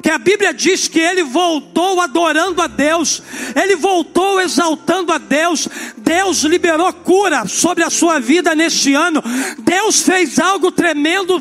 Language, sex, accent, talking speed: Portuguese, male, Brazilian, 145 wpm